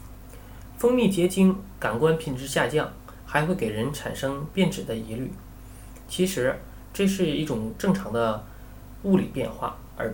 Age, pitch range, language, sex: 20-39, 120-155 Hz, Chinese, male